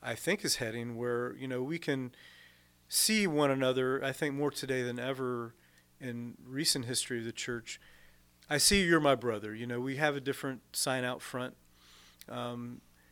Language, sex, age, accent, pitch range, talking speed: English, male, 40-59, American, 115-130 Hz, 180 wpm